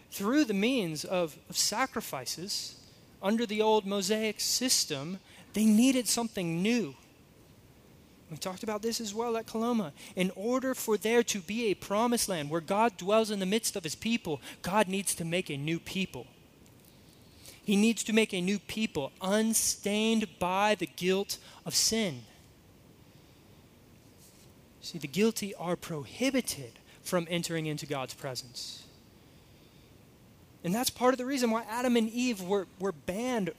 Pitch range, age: 165-220 Hz, 20-39